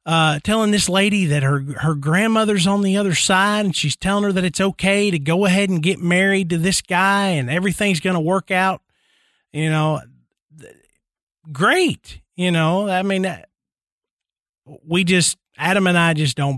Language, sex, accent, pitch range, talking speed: English, male, American, 160-200 Hz, 175 wpm